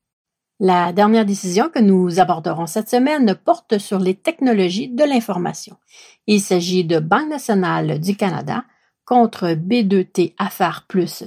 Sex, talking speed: female, 135 wpm